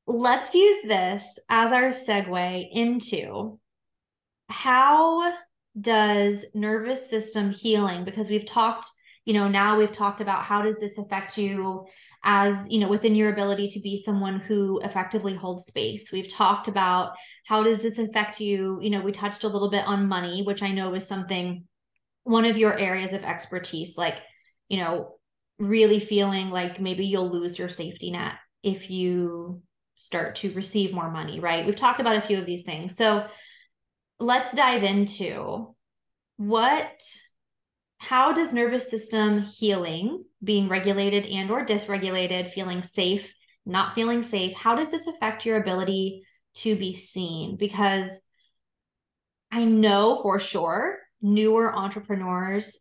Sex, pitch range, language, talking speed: female, 190-220 Hz, English, 150 wpm